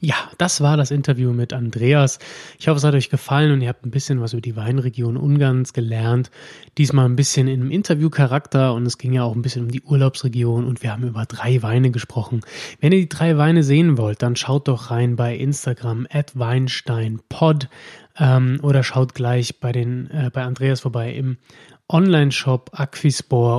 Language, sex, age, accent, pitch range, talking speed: German, male, 20-39, German, 125-145 Hz, 190 wpm